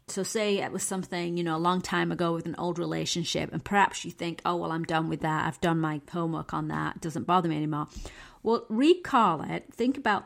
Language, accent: English, British